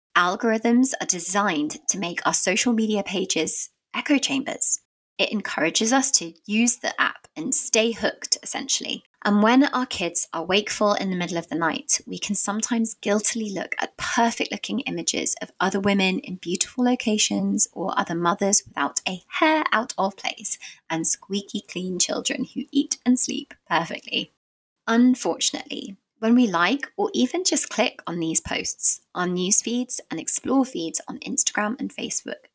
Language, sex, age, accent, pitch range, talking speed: English, female, 20-39, British, 185-255 Hz, 160 wpm